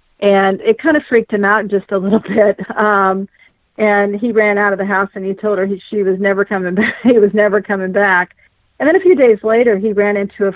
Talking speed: 250 wpm